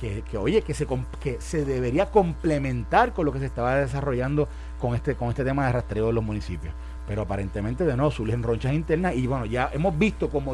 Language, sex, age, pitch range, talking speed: Spanish, male, 40-59, 115-155 Hz, 215 wpm